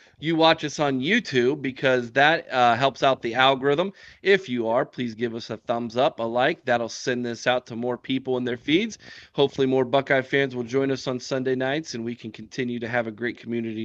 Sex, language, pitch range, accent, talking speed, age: male, English, 125-170 Hz, American, 225 wpm, 40-59